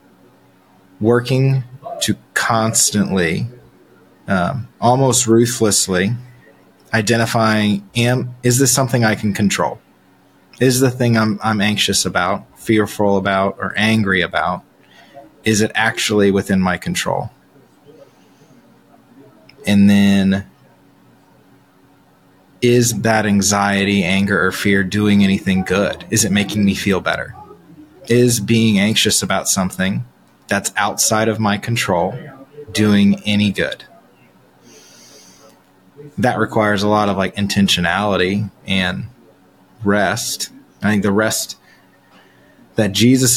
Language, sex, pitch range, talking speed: English, male, 95-110 Hz, 105 wpm